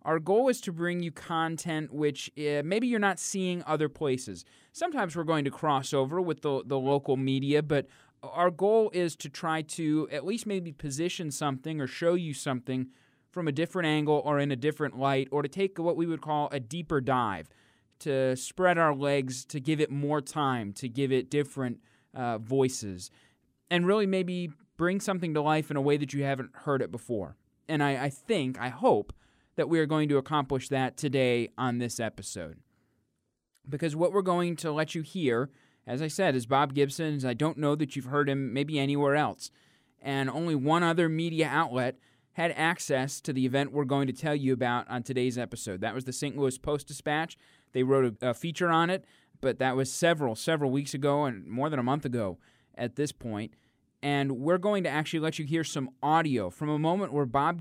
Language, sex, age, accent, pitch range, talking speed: English, male, 20-39, American, 130-160 Hz, 205 wpm